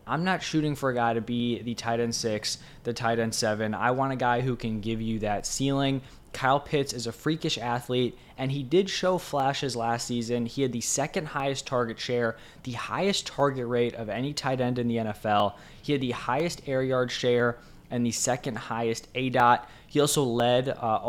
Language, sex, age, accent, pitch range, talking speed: English, male, 20-39, American, 115-140 Hz, 210 wpm